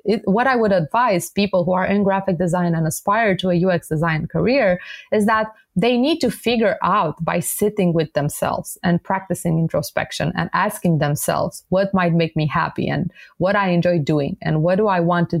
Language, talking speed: English, 200 wpm